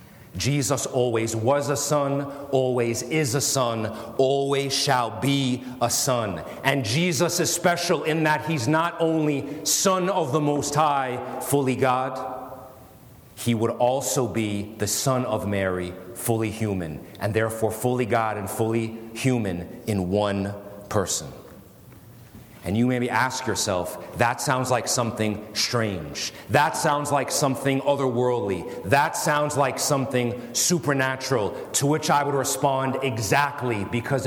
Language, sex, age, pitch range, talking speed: English, male, 30-49, 115-150 Hz, 135 wpm